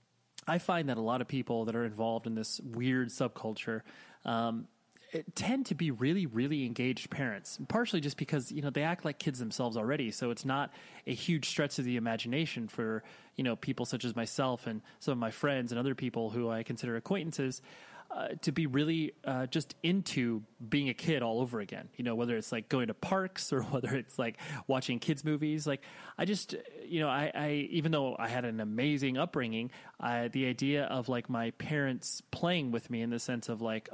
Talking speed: 205 wpm